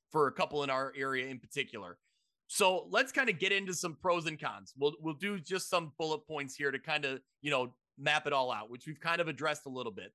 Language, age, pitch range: English, 30-49, 150-185 Hz